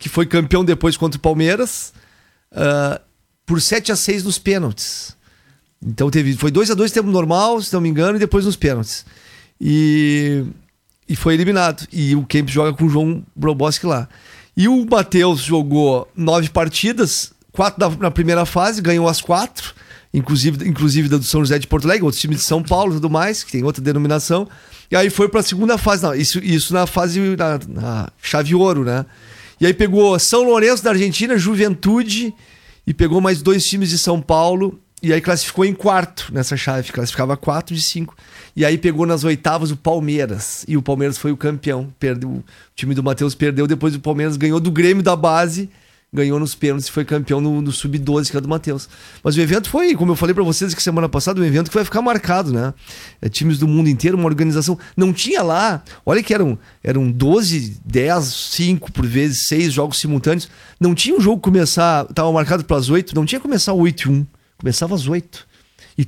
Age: 40-59